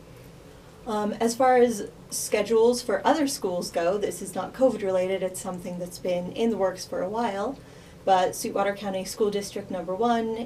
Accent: American